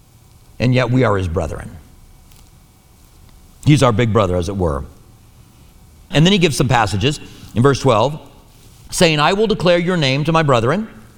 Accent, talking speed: American, 165 wpm